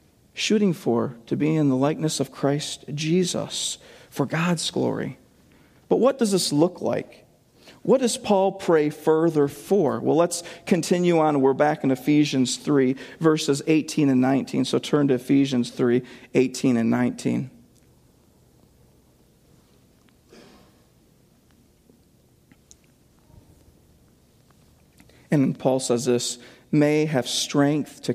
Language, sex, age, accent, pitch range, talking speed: English, male, 40-59, American, 130-195 Hz, 115 wpm